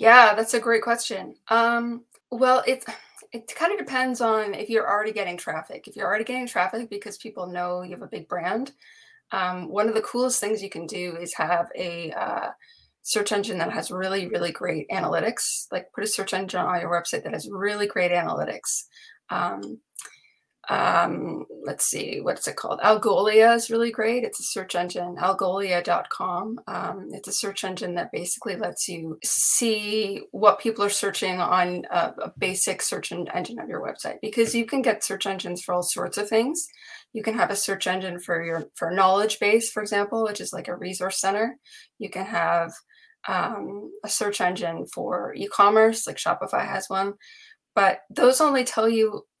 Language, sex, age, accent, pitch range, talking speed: English, female, 20-39, American, 185-235 Hz, 180 wpm